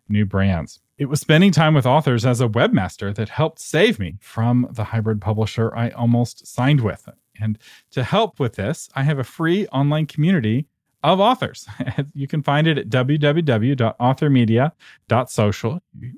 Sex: male